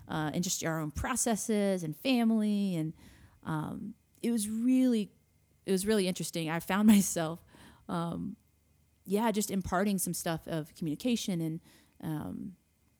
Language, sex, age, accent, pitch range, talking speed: English, female, 30-49, American, 160-195 Hz, 140 wpm